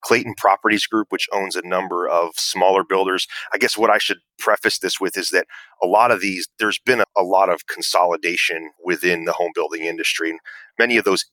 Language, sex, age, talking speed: English, male, 30-49, 200 wpm